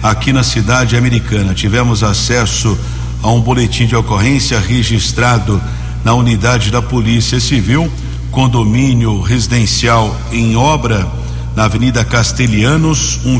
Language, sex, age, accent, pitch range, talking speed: Portuguese, male, 50-69, Brazilian, 110-125 Hz, 110 wpm